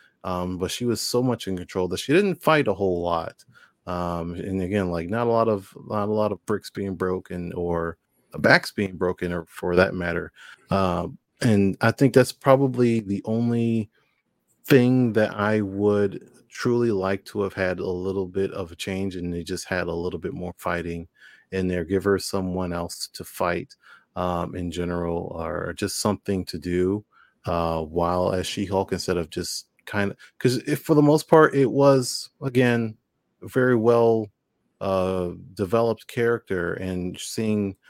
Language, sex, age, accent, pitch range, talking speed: English, male, 30-49, American, 90-115 Hz, 180 wpm